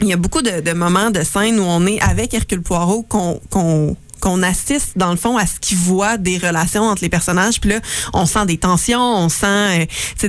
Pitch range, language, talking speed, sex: 175-215 Hz, French, 235 wpm, female